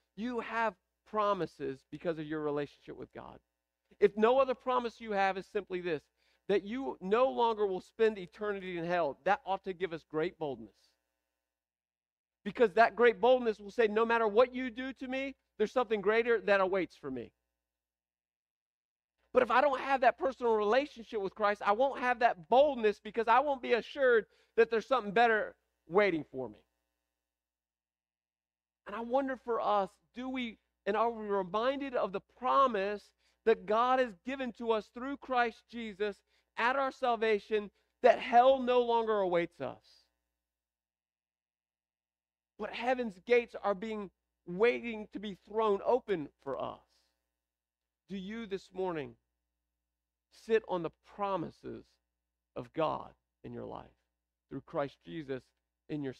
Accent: American